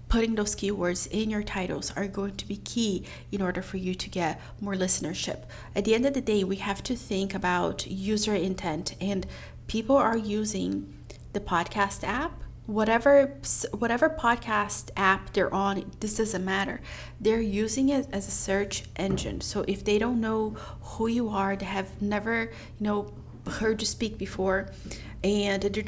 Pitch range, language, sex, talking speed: 195-225 Hz, English, female, 170 wpm